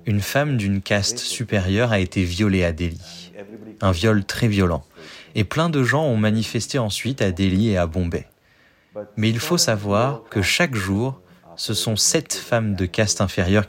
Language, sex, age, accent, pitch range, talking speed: French, male, 30-49, French, 95-115 Hz, 175 wpm